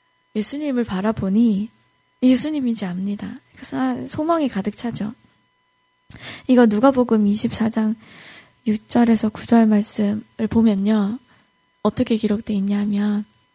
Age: 20-39